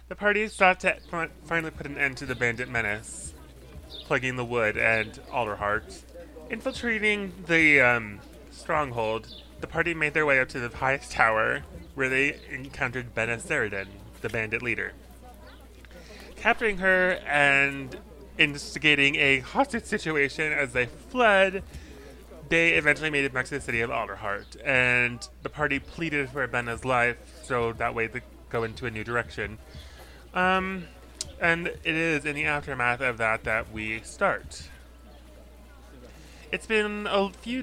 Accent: American